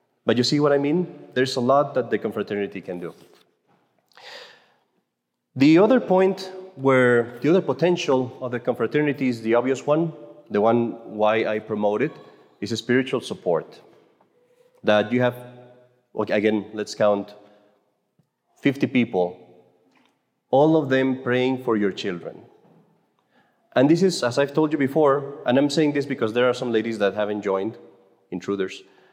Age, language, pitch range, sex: 30-49, English, 110-150 Hz, male